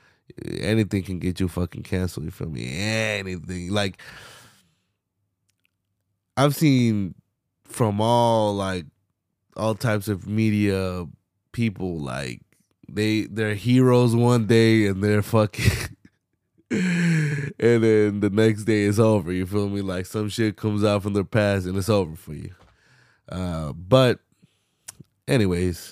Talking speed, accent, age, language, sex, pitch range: 130 wpm, American, 20-39, English, male, 95-115 Hz